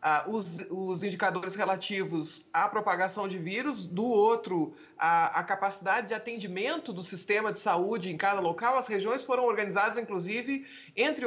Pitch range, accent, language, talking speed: 190-255 Hz, Brazilian, Portuguese, 155 wpm